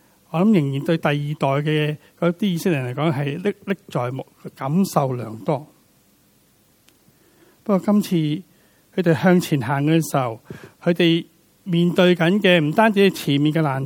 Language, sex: Chinese, male